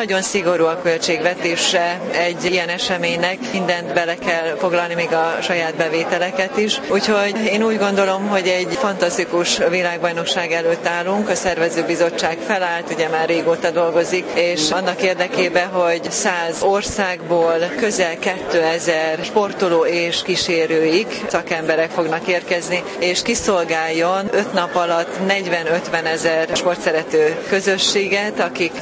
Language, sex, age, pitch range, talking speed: Hungarian, female, 30-49, 165-190 Hz, 120 wpm